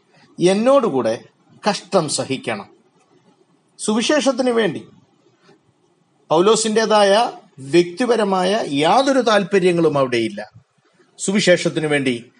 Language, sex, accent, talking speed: Malayalam, male, native, 60 wpm